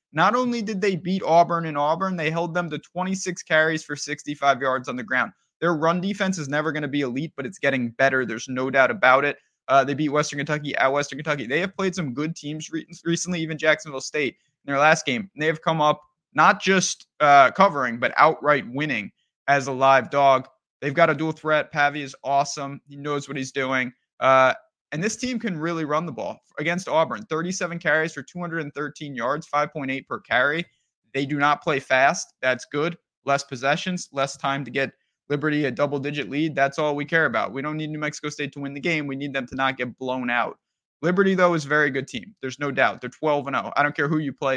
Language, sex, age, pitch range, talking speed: English, male, 20-39, 140-165 Hz, 220 wpm